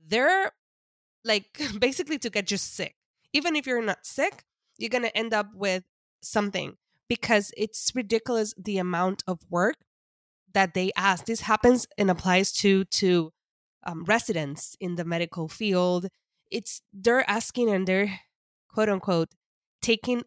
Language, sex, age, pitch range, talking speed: English, female, 20-39, 180-230 Hz, 140 wpm